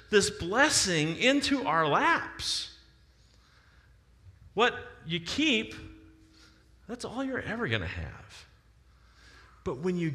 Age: 40-59